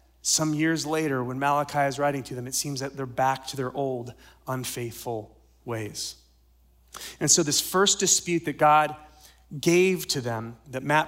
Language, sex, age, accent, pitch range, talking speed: English, male, 30-49, American, 120-155 Hz, 170 wpm